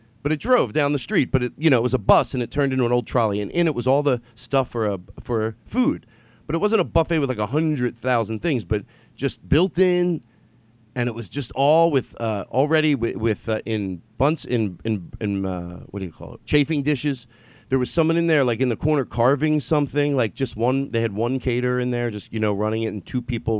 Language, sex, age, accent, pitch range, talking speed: English, male, 40-59, American, 110-140 Hz, 250 wpm